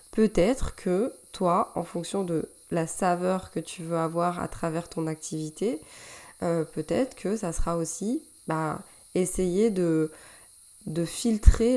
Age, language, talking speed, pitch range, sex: 20-39, French, 140 wpm, 170-210 Hz, female